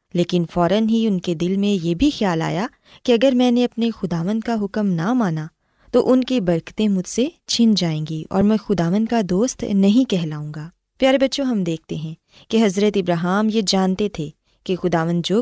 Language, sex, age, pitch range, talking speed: Urdu, female, 20-39, 175-245 Hz, 200 wpm